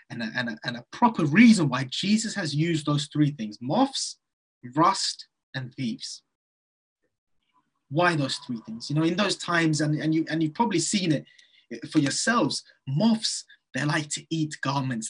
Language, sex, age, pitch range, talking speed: English, male, 20-39, 140-185 Hz, 175 wpm